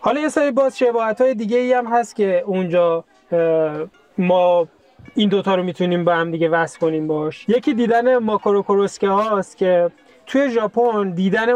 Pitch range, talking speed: 170-220 Hz, 165 wpm